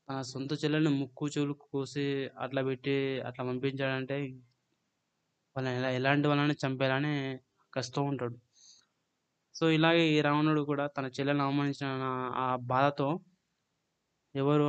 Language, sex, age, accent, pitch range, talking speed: Telugu, male, 20-39, native, 130-150 Hz, 110 wpm